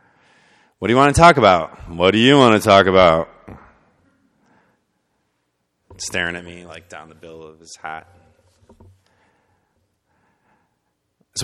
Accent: American